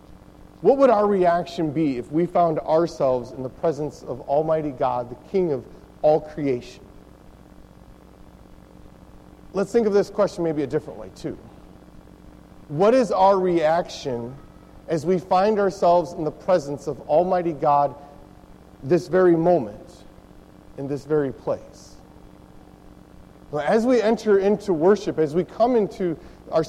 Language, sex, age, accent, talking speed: English, male, 40-59, American, 140 wpm